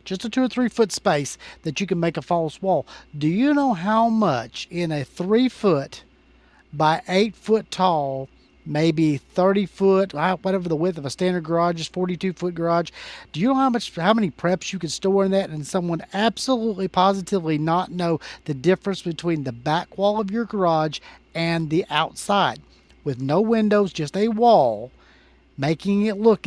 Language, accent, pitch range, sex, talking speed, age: English, American, 155-195 Hz, male, 185 wpm, 40-59